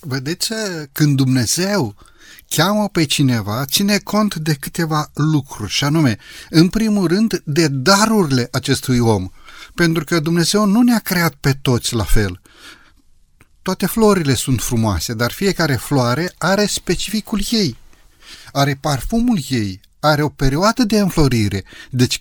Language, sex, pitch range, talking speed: Romanian, male, 135-185 Hz, 130 wpm